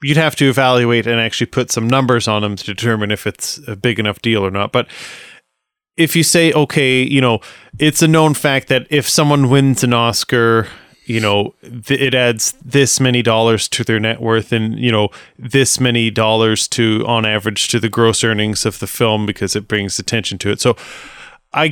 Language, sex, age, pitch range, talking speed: English, male, 30-49, 110-140 Hz, 200 wpm